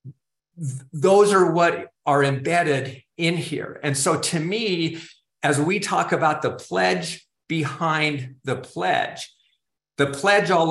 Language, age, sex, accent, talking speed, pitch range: English, 50-69, male, American, 130 wpm, 130-155 Hz